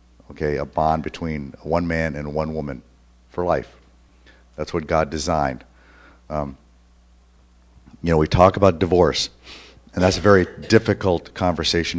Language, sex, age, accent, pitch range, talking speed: English, male, 50-69, American, 70-90 Hz, 140 wpm